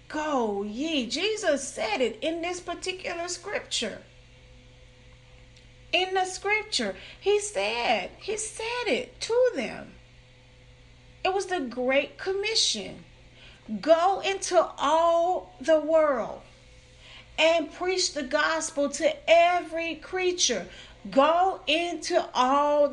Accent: American